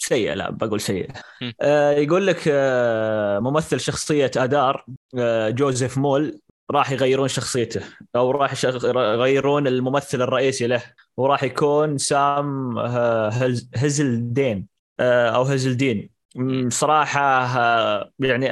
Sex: male